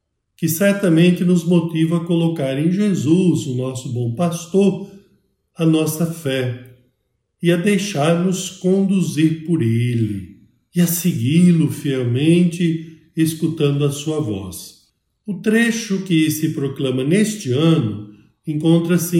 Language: Portuguese